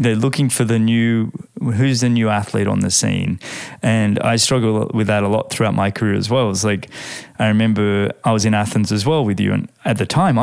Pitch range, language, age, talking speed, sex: 105-135 Hz, English, 20-39, 230 wpm, male